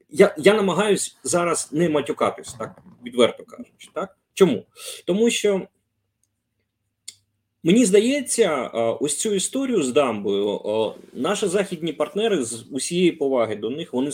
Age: 30-49